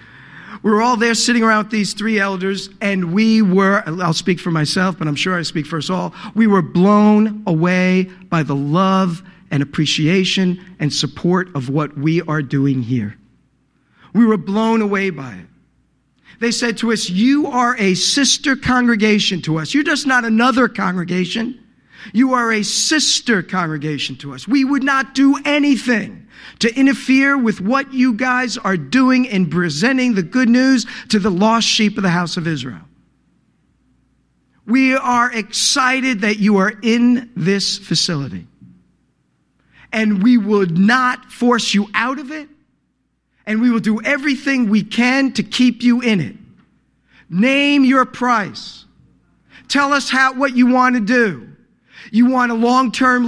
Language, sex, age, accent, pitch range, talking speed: English, male, 50-69, American, 185-250 Hz, 160 wpm